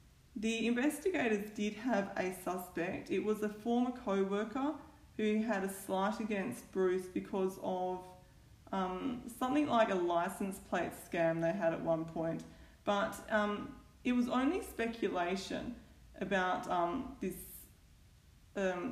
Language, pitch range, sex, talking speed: English, 185-245 Hz, female, 130 wpm